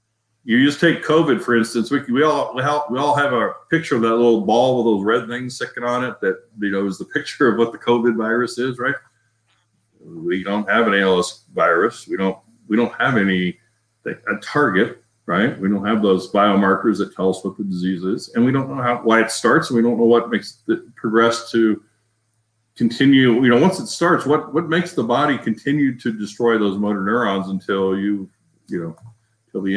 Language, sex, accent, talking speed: English, male, American, 210 wpm